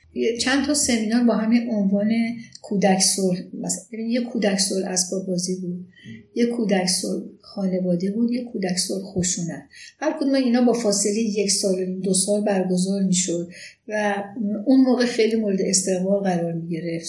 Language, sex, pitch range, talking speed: Persian, female, 185-230 Hz, 135 wpm